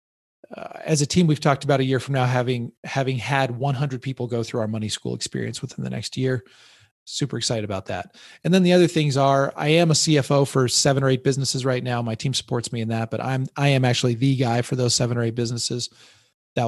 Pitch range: 115-140 Hz